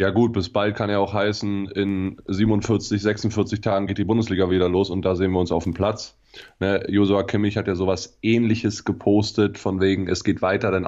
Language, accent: German, German